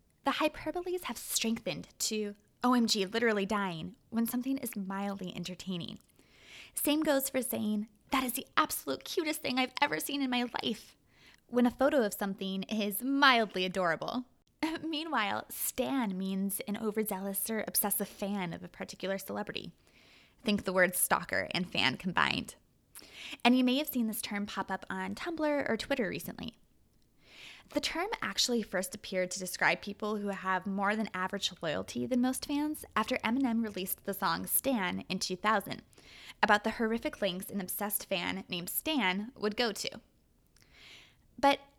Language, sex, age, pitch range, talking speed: English, female, 20-39, 195-255 Hz, 155 wpm